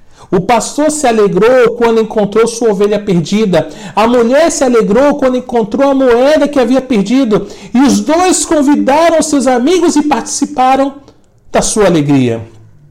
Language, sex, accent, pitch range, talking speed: Portuguese, male, Brazilian, 145-225 Hz, 145 wpm